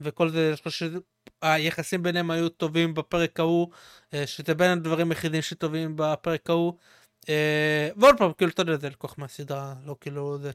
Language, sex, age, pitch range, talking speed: Hebrew, male, 20-39, 160-195 Hz, 150 wpm